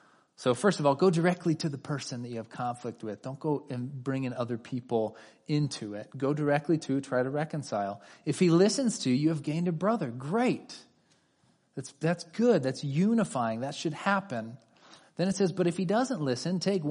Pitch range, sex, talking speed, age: 120-170 Hz, male, 200 wpm, 30-49